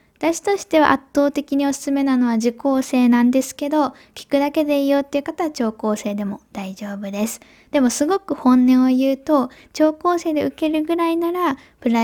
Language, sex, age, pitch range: Japanese, female, 10-29, 220-275 Hz